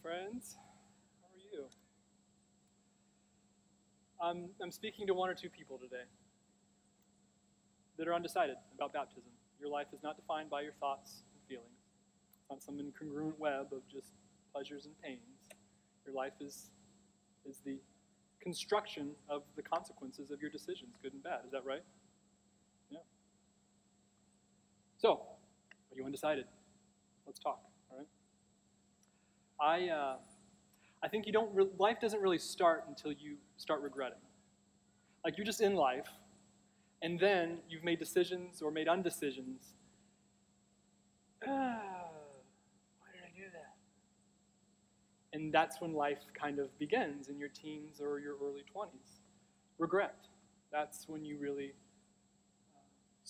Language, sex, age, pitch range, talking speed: English, male, 20-39, 135-175 Hz, 135 wpm